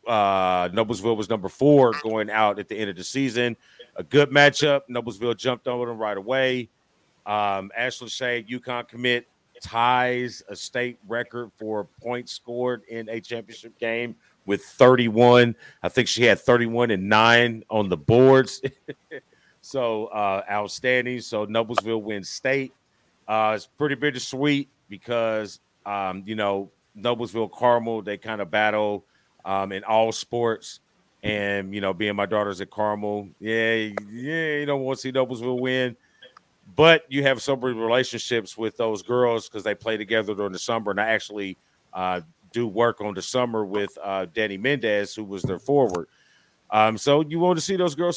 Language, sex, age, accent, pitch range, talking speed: English, male, 40-59, American, 105-125 Hz, 170 wpm